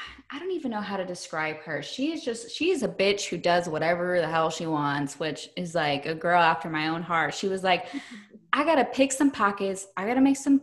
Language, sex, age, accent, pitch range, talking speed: English, female, 10-29, American, 165-215 Hz, 235 wpm